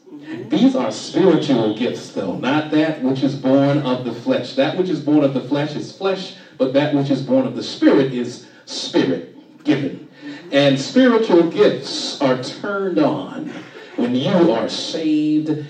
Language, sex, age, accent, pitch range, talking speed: English, male, 40-59, American, 140-185 Hz, 160 wpm